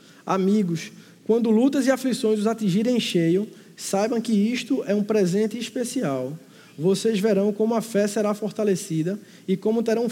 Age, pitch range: 20-39, 170-220 Hz